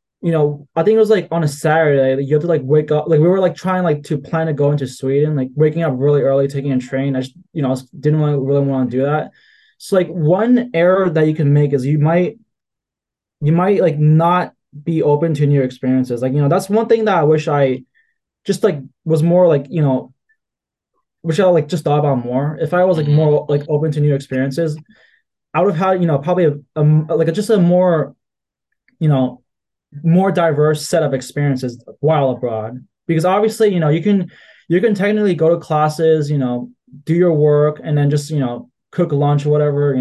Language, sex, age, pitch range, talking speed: English, male, 20-39, 140-175 Hz, 220 wpm